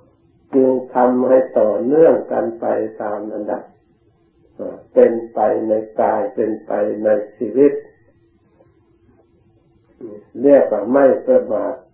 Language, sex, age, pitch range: Thai, male, 60-79, 115-145 Hz